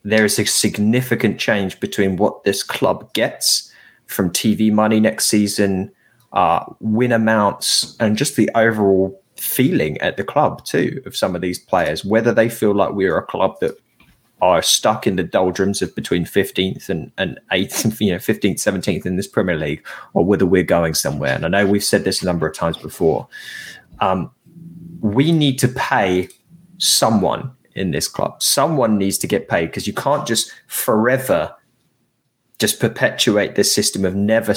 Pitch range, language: 95-125 Hz, English